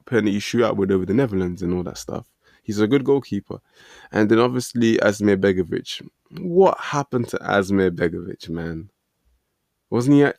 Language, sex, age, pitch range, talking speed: English, male, 20-39, 95-115 Hz, 175 wpm